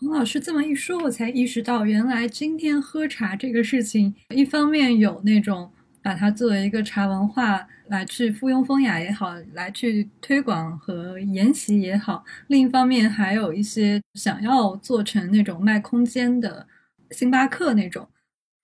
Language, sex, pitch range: Chinese, female, 200-255 Hz